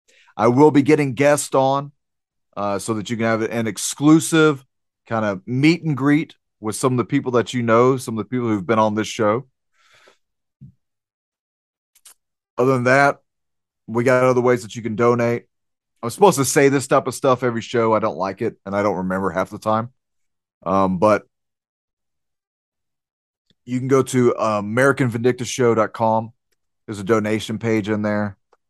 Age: 30-49